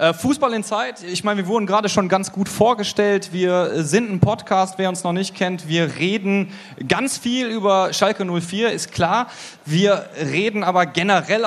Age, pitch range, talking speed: 30-49, 180-210 Hz, 180 wpm